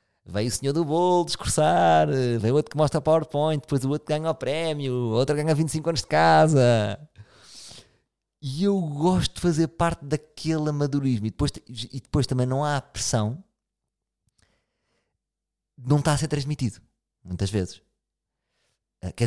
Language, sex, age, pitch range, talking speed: Portuguese, male, 30-49, 100-140 Hz, 155 wpm